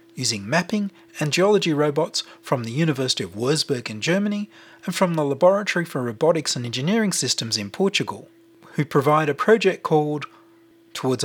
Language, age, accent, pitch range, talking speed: English, 30-49, Australian, 140-200 Hz, 155 wpm